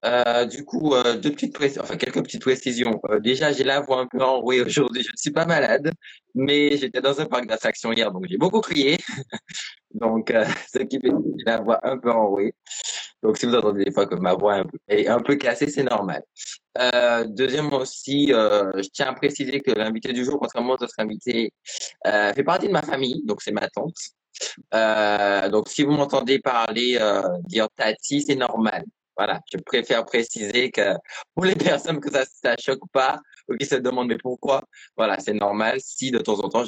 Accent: French